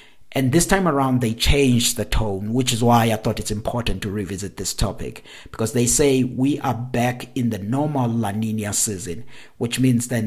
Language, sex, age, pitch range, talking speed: English, male, 60-79, 105-130 Hz, 200 wpm